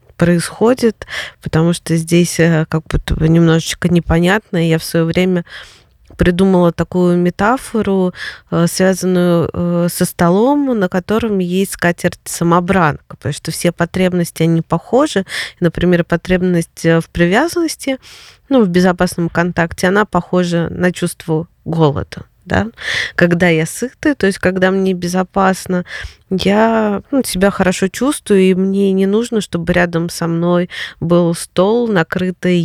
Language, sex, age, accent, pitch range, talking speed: Russian, female, 20-39, native, 170-200 Hz, 120 wpm